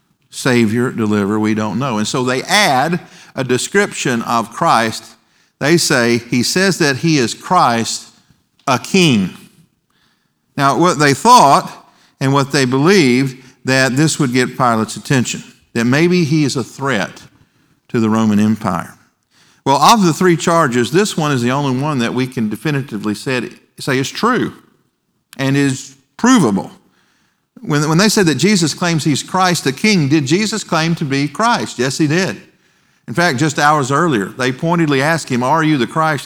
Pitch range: 120-165 Hz